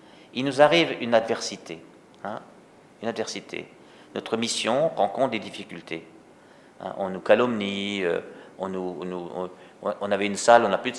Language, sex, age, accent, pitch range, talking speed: French, male, 50-69, French, 105-145 Hz, 170 wpm